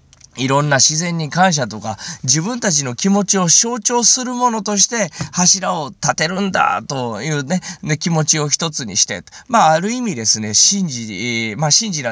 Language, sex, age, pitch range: Japanese, male, 20-39, 125-195 Hz